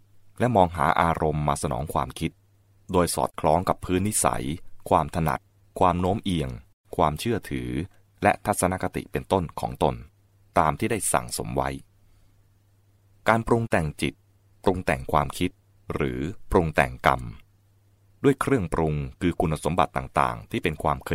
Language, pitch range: English, 75-100 Hz